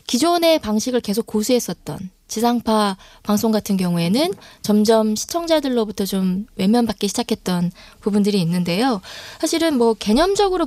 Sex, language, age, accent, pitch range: female, Korean, 20-39, native, 205-260 Hz